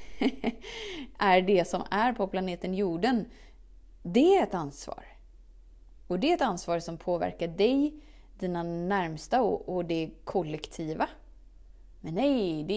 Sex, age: female, 30-49